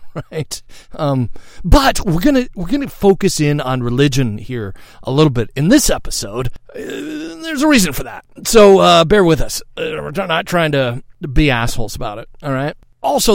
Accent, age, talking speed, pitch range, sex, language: American, 40-59, 195 wpm, 125-175 Hz, male, English